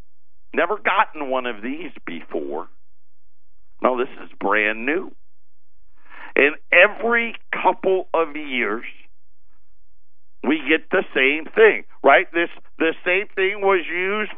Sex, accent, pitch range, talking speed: male, American, 190-255 Hz, 115 wpm